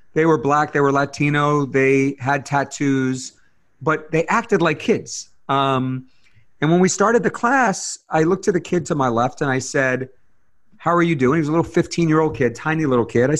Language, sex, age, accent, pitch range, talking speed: English, male, 40-59, American, 125-160 Hz, 215 wpm